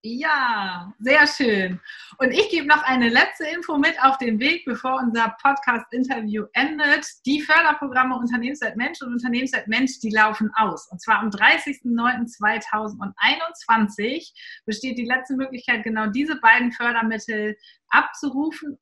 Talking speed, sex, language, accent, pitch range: 130 wpm, female, German, German, 215-275 Hz